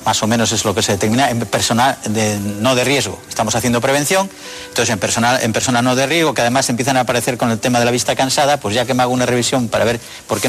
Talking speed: 275 wpm